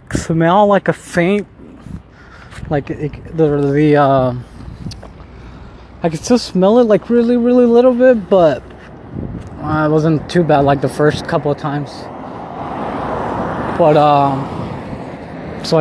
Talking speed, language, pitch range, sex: 130 wpm, English, 130-175 Hz, male